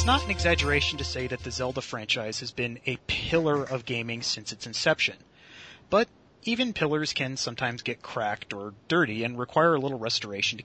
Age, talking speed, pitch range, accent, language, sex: 30-49, 190 wpm, 115-145 Hz, American, English, male